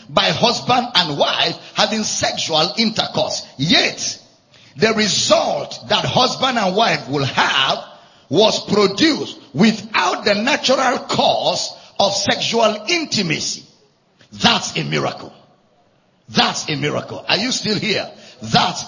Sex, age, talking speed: male, 50-69, 115 wpm